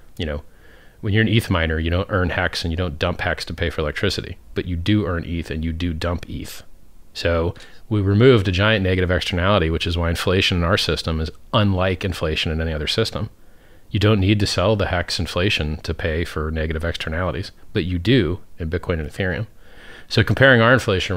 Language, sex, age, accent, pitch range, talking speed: English, male, 40-59, American, 85-110 Hz, 215 wpm